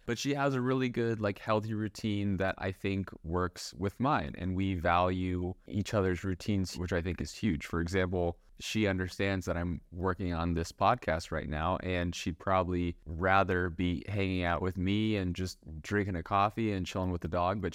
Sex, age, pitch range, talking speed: male, 20-39, 85-95 Hz, 195 wpm